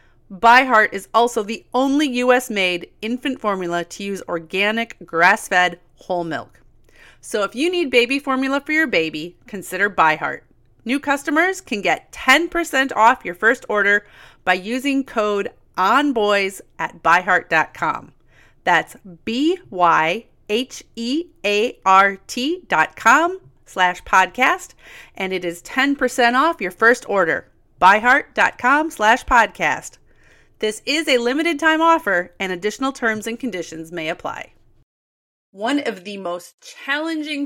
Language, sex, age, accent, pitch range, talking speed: English, female, 40-59, American, 180-255 Hz, 120 wpm